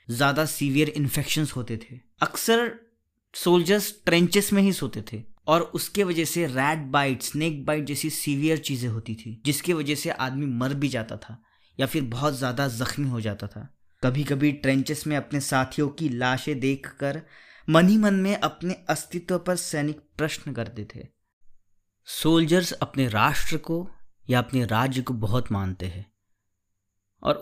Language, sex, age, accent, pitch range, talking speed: Hindi, male, 20-39, native, 115-155 Hz, 160 wpm